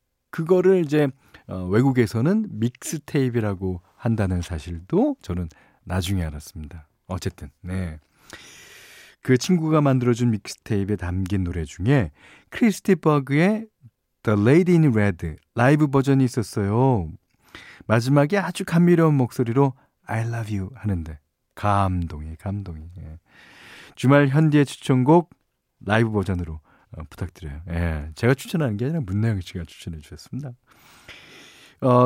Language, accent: Korean, native